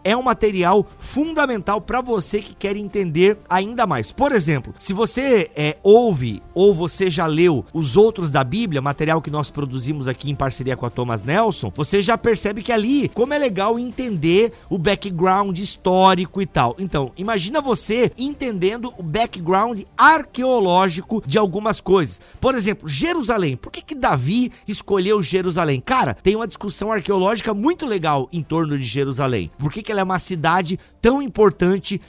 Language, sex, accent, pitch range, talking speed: Portuguese, male, Brazilian, 155-215 Hz, 165 wpm